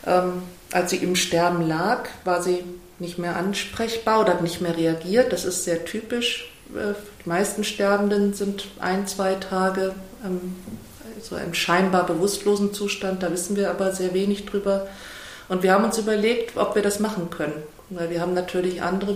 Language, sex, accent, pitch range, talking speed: German, female, German, 185-215 Hz, 165 wpm